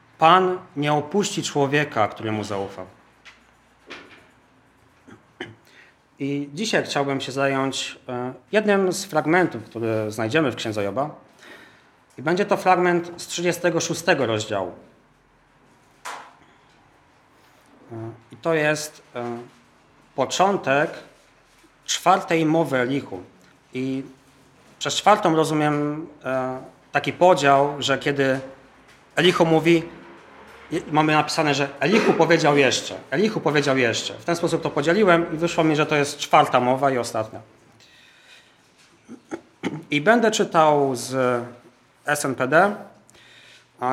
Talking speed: 100 wpm